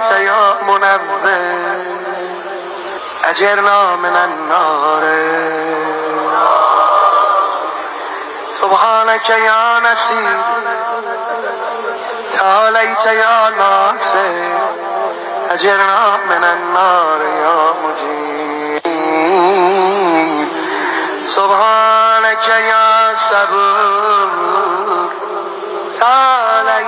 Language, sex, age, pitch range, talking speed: Hindi, male, 30-49, 170-200 Hz, 30 wpm